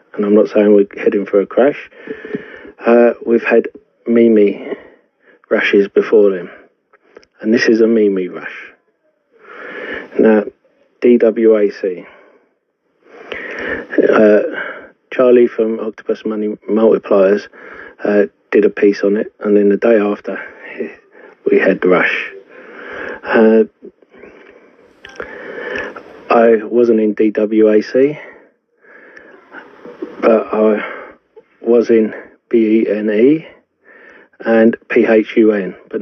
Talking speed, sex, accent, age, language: 100 wpm, male, British, 40-59, English